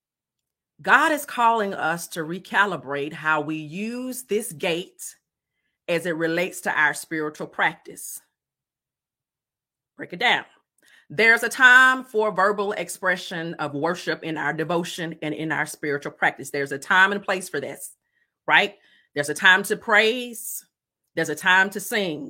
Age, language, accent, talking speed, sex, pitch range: 30-49, English, American, 150 wpm, female, 170-250 Hz